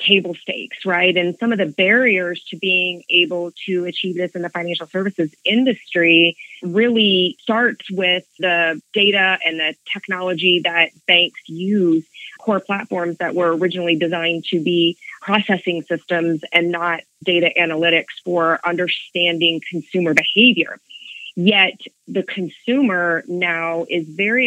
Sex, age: female, 30-49